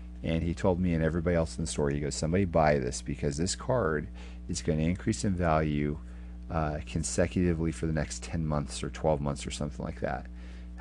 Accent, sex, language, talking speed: American, male, English, 215 wpm